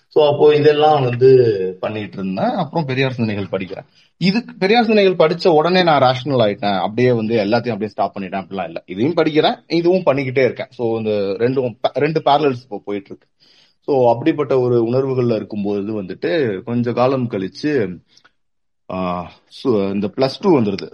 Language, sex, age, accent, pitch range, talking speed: Tamil, male, 30-49, native, 100-145 Hz, 120 wpm